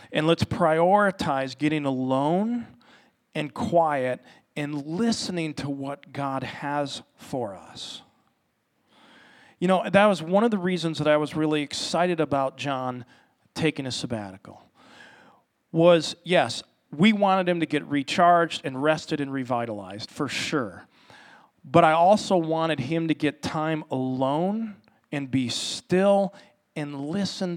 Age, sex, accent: 40-59, male, American